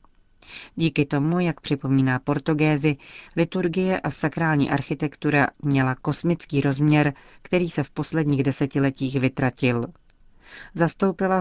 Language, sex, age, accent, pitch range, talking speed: Czech, female, 40-59, native, 135-155 Hz, 100 wpm